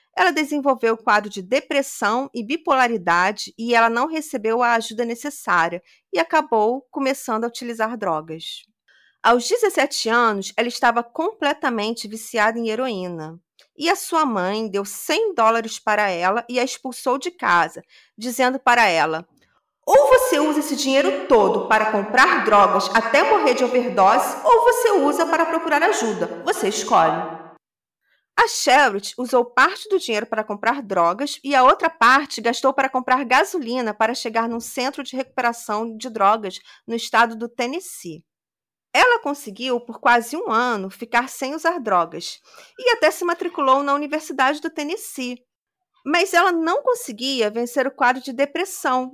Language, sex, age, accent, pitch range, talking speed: Portuguese, female, 40-59, Brazilian, 225-300 Hz, 150 wpm